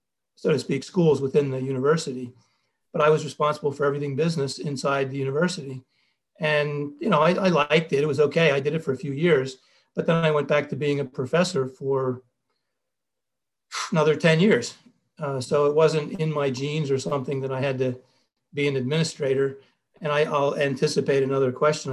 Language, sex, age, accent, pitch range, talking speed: English, male, 40-59, American, 135-150 Hz, 185 wpm